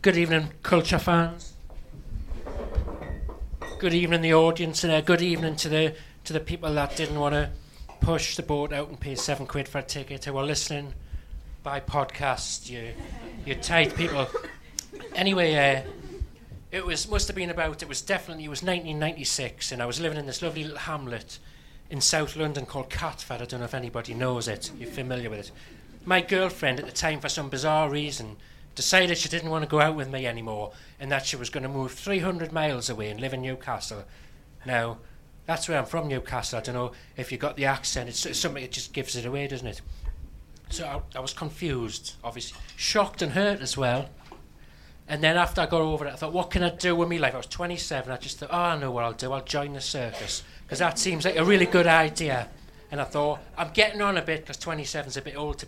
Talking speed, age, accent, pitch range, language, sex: 220 wpm, 30-49, British, 125-160 Hz, English, male